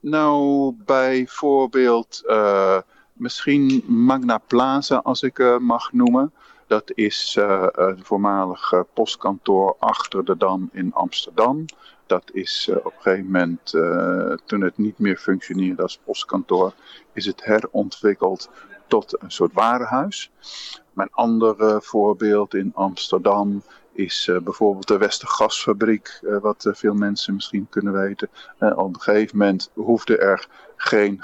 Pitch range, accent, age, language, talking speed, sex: 100-130 Hz, Dutch, 50-69, Dutch, 135 wpm, male